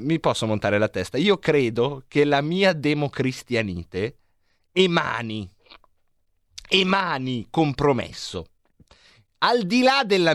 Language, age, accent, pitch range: Italian, 30-49, native, 125-190 Hz